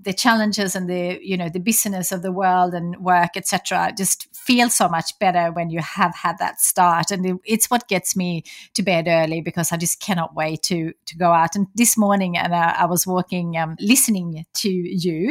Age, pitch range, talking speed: 30-49, 175-200 Hz, 210 wpm